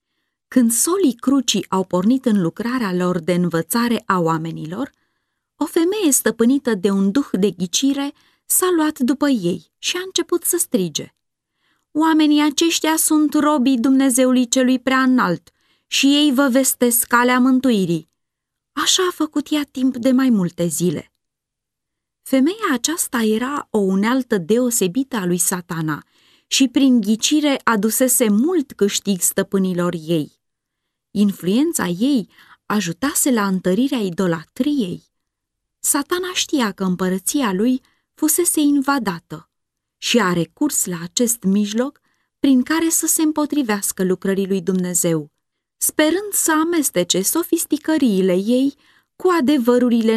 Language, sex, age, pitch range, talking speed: Romanian, female, 20-39, 195-290 Hz, 120 wpm